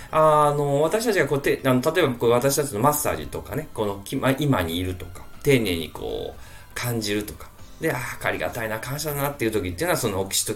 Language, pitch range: Japanese, 90-125 Hz